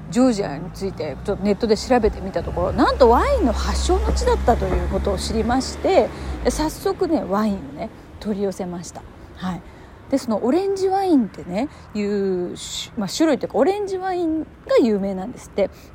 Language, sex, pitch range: Japanese, female, 190-290 Hz